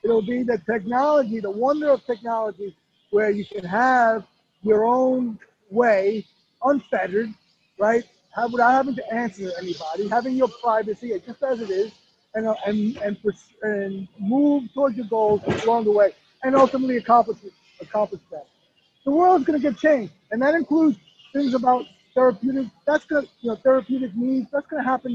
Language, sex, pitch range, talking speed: English, male, 210-260 Hz, 160 wpm